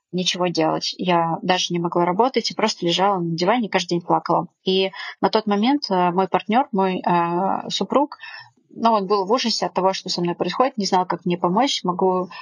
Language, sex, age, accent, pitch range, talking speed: Russian, female, 20-39, native, 180-215 Hz, 205 wpm